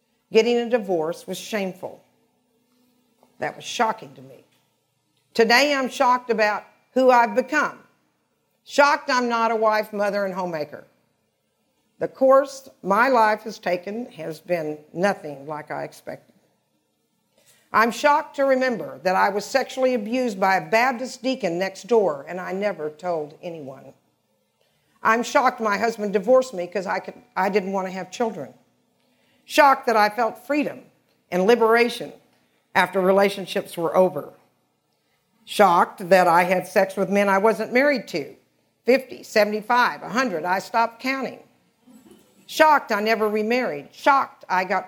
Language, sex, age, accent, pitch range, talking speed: English, female, 50-69, American, 190-245 Hz, 140 wpm